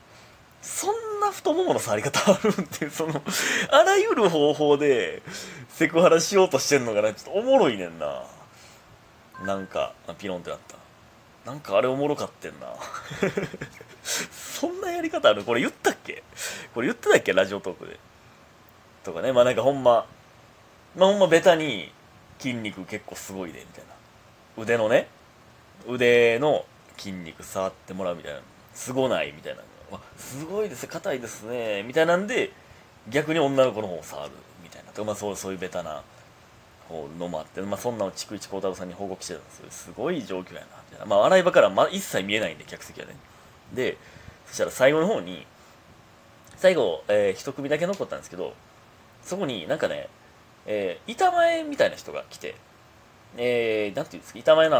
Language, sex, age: Japanese, male, 30-49